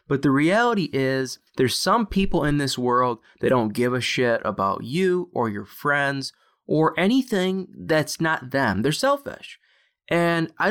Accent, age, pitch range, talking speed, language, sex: American, 20-39, 125-185 Hz, 160 wpm, English, male